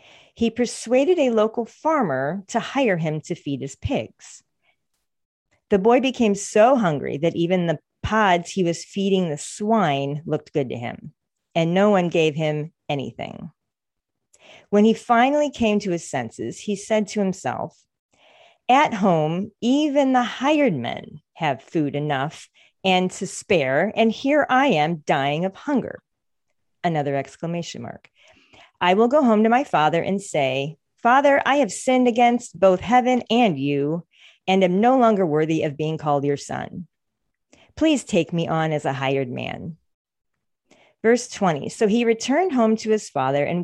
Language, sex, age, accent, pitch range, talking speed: English, female, 40-59, American, 160-240 Hz, 160 wpm